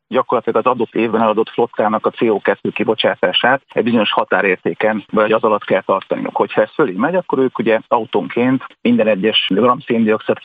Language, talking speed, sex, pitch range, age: Hungarian, 160 wpm, male, 110-125 Hz, 40-59